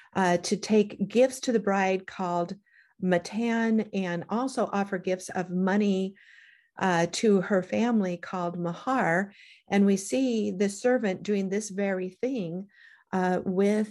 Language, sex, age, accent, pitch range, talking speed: English, female, 50-69, American, 180-210 Hz, 140 wpm